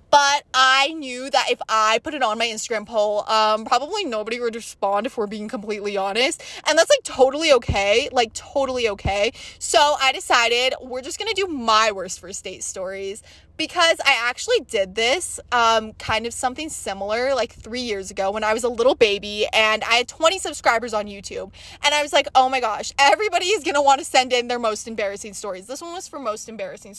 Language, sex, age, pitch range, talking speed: English, female, 20-39, 220-290 Hz, 210 wpm